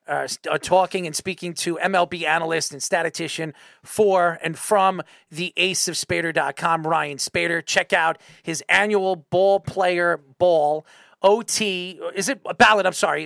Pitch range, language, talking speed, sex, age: 160-195 Hz, English, 140 wpm, male, 40-59